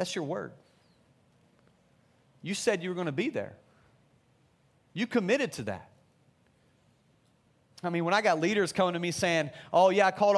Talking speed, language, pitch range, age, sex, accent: 170 wpm, English, 125-180 Hz, 40-59, male, American